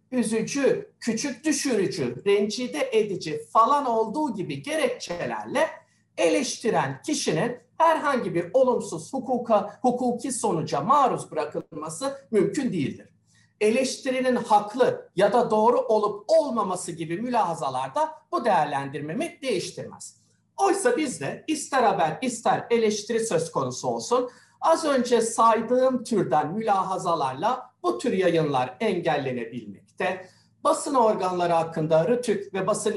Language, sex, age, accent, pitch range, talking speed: Turkish, male, 50-69, native, 175-255 Hz, 105 wpm